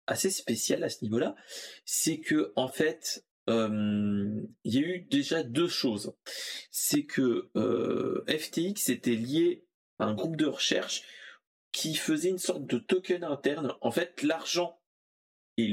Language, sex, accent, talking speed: French, male, French, 150 wpm